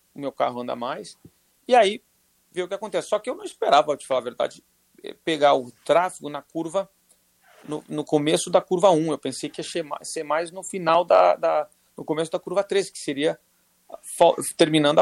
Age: 40-59